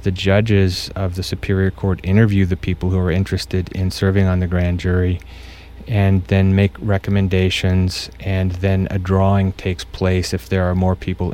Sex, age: male, 30-49